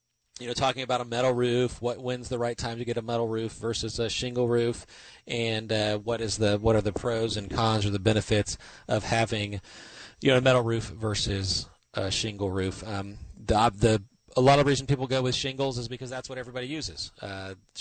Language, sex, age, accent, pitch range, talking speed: English, male, 30-49, American, 100-120 Hz, 220 wpm